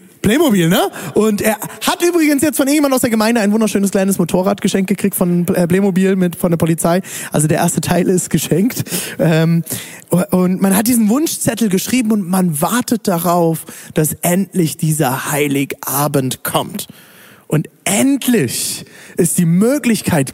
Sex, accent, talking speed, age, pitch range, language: male, German, 150 wpm, 20-39, 165-215 Hz, German